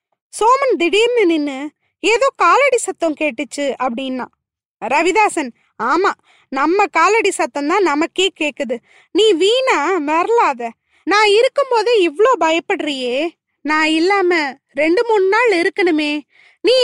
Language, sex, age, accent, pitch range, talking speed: Tamil, female, 20-39, native, 300-405 Hz, 105 wpm